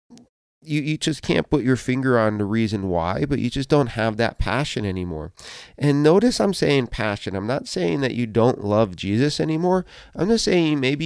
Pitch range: 100-135 Hz